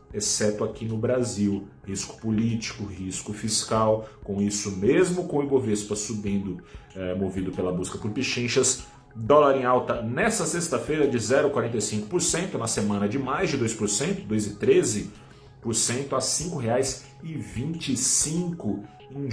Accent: Brazilian